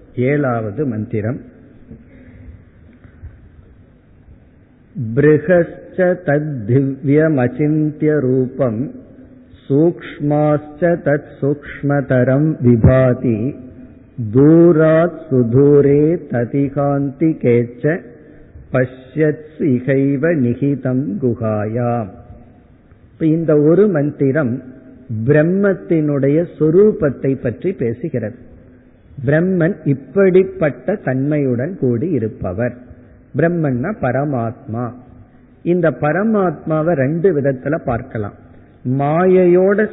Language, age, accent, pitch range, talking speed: Tamil, 50-69, native, 125-160 Hz, 45 wpm